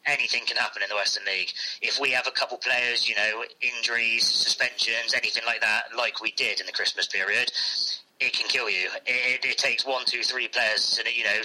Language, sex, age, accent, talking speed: English, male, 30-49, British, 215 wpm